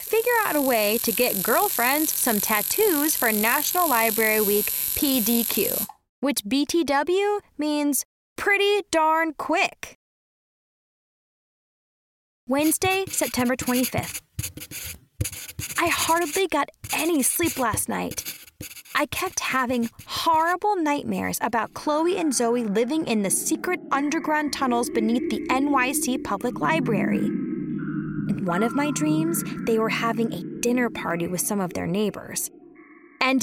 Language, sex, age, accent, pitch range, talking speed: English, female, 20-39, American, 220-320 Hz, 120 wpm